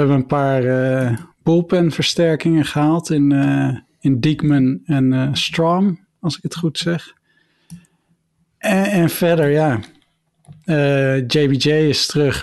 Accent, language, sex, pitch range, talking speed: Dutch, Dutch, male, 135-165 Hz, 130 wpm